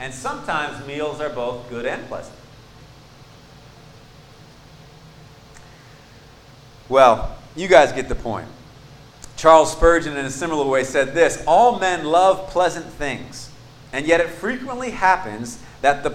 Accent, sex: American, male